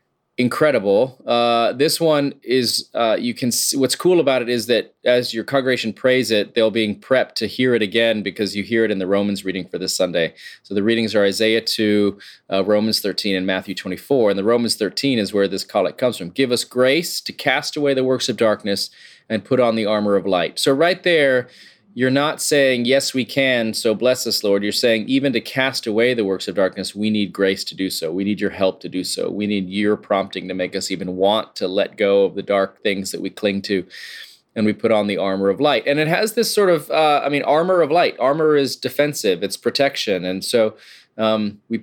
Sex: male